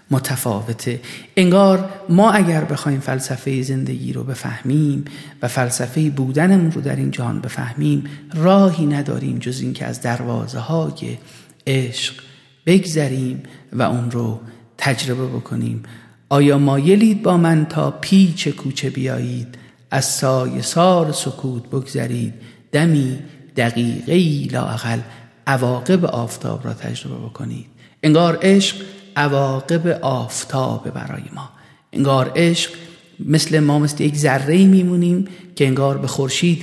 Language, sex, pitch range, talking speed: Persian, male, 125-155 Hz, 115 wpm